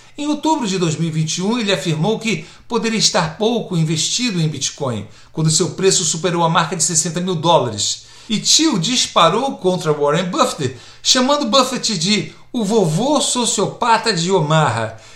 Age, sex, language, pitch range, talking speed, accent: 60-79, male, Portuguese, 165-215 Hz, 145 wpm, Brazilian